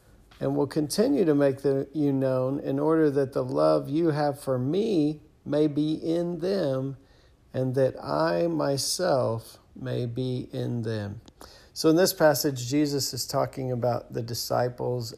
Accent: American